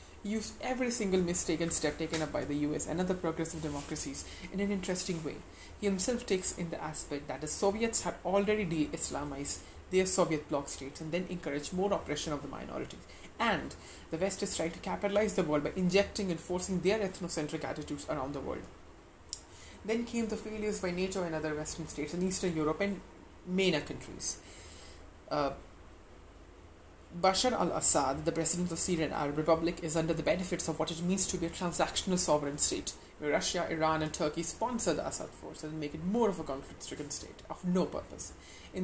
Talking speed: 190 wpm